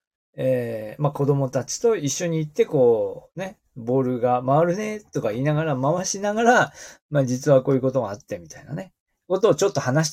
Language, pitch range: Japanese, 130-205 Hz